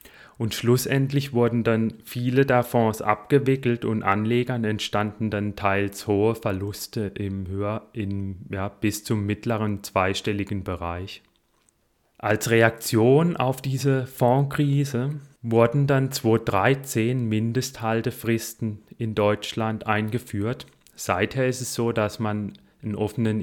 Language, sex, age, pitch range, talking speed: German, male, 30-49, 105-125 Hz, 115 wpm